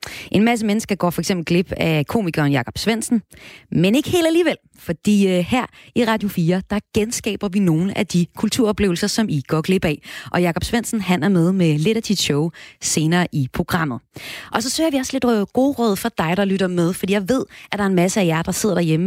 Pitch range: 155-200 Hz